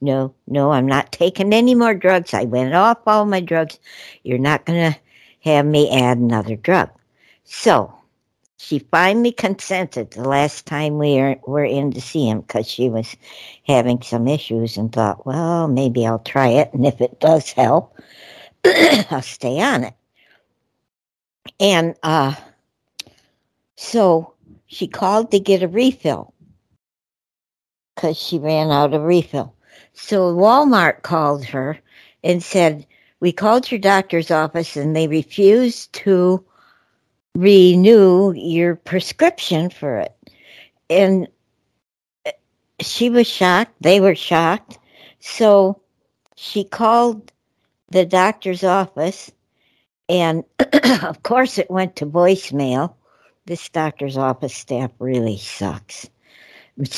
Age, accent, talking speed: 60-79, American, 125 wpm